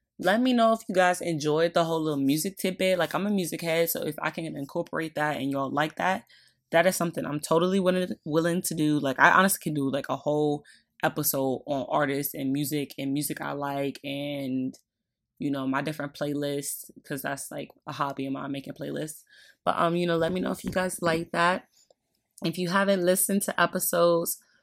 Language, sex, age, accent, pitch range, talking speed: English, female, 20-39, American, 145-175 Hz, 210 wpm